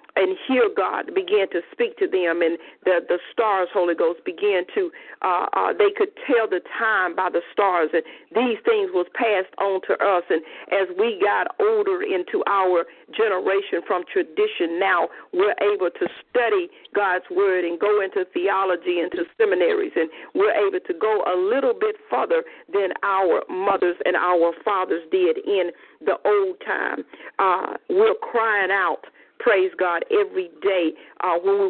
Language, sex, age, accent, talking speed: English, female, 50-69, American, 170 wpm